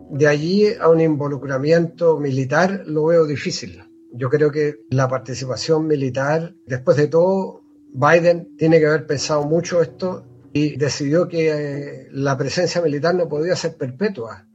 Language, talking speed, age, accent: Spanish, 145 wpm, 50-69, Argentinian